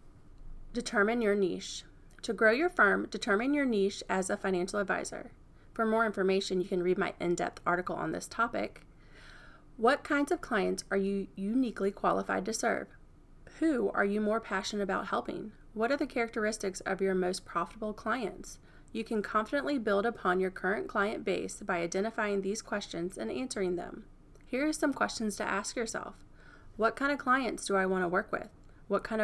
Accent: American